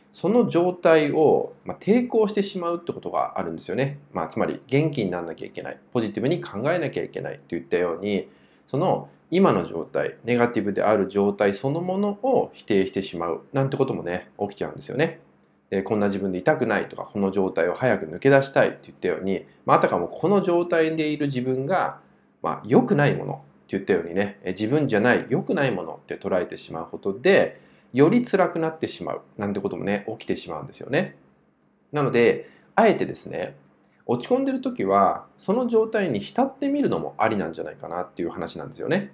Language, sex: Japanese, male